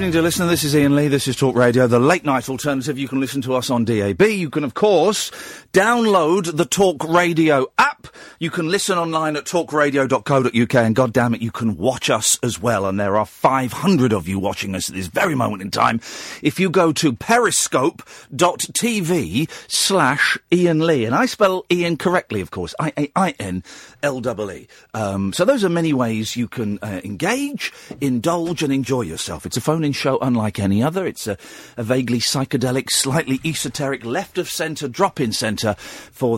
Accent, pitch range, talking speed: British, 115-185 Hz, 175 wpm